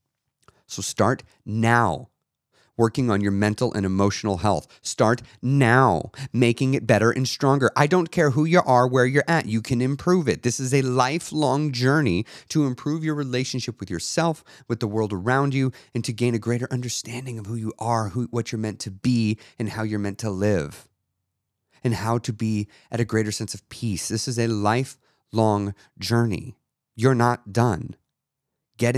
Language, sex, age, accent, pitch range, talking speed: English, male, 30-49, American, 105-130 Hz, 180 wpm